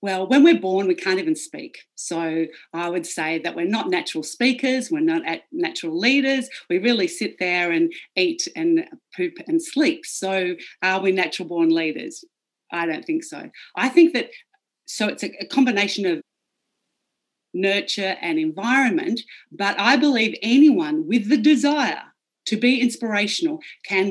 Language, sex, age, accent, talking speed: English, female, 40-59, Australian, 155 wpm